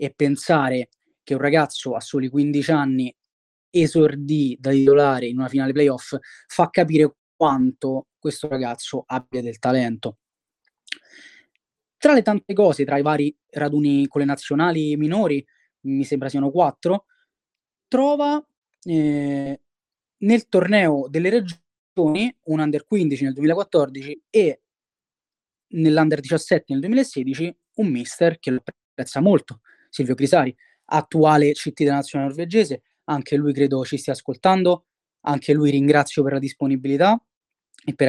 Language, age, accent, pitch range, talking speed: Italian, 20-39, native, 140-180 Hz, 130 wpm